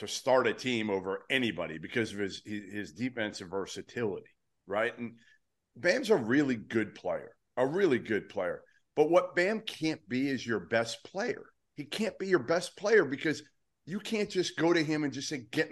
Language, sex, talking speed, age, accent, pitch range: English, male, 185 wpm, 40-59, American, 110-145 Hz